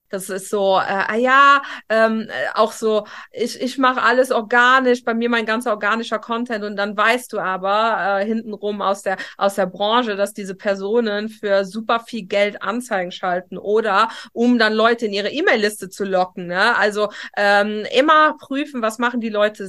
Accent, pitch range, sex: German, 205-240 Hz, female